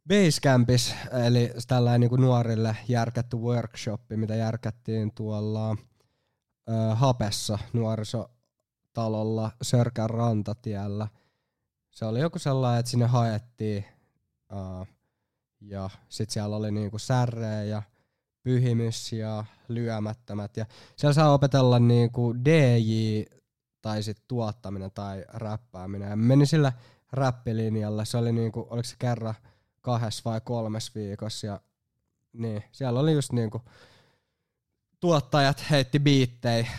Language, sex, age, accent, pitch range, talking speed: Finnish, male, 20-39, native, 110-125 Hz, 100 wpm